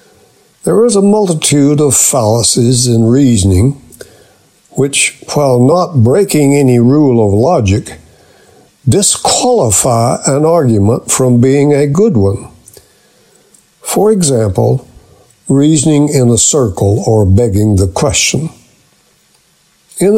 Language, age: English, 60-79